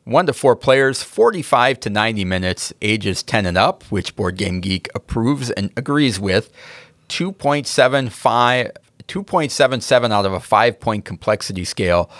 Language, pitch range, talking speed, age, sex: English, 100-130 Hz, 130 wpm, 40-59, male